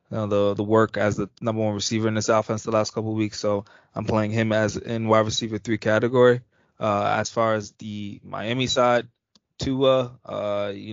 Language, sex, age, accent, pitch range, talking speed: English, male, 20-39, American, 100-110 Hz, 210 wpm